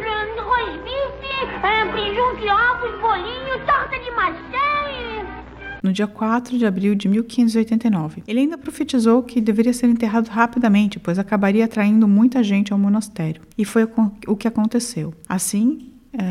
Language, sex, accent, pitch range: Portuguese, female, Brazilian, 190-235 Hz